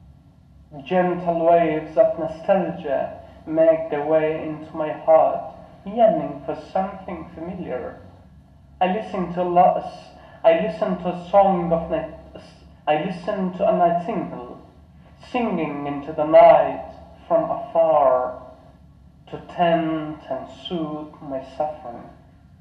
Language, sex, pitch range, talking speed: English, male, 145-185 Hz, 115 wpm